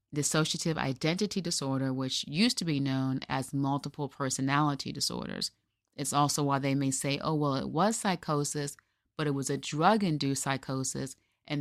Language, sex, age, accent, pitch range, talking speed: English, female, 30-49, American, 135-160 Hz, 155 wpm